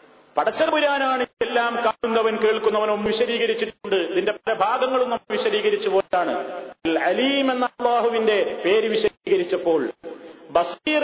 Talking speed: 85 wpm